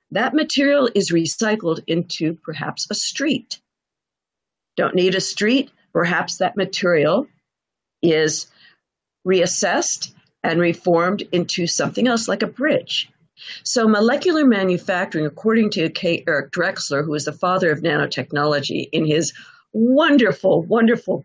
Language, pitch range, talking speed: English, 155-195 Hz, 120 wpm